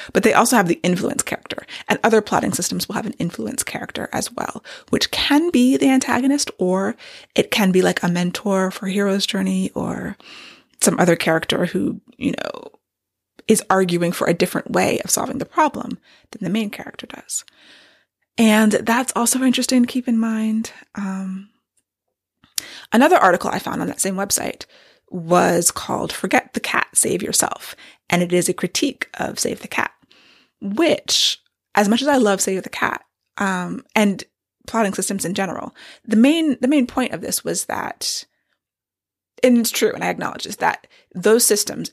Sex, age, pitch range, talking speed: female, 20-39, 185-255 Hz, 175 wpm